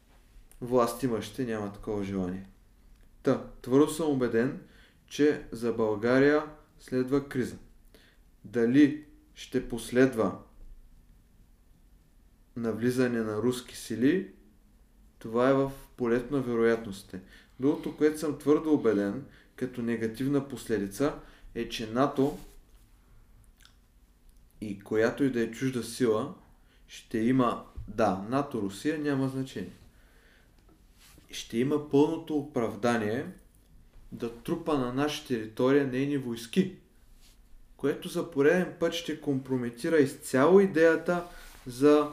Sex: male